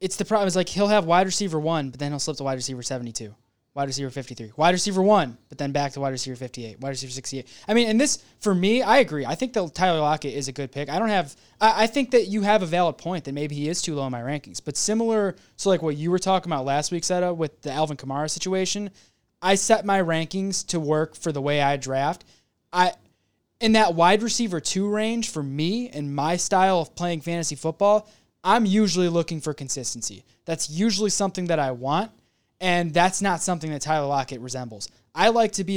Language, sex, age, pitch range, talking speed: English, male, 20-39, 140-185 Hz, 235 wpm